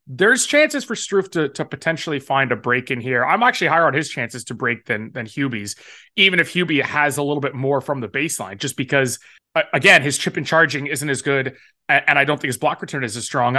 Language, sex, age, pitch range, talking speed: English, male, 30-49, 130-165 Hz, 240 wpm